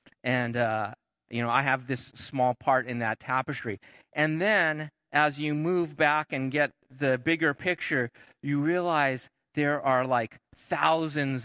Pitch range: 130-160 Hz